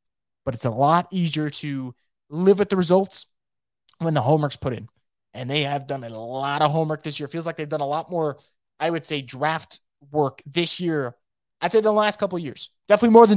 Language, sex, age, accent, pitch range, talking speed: English, male, 20-39, American, 145-185 Hz, 220 wpm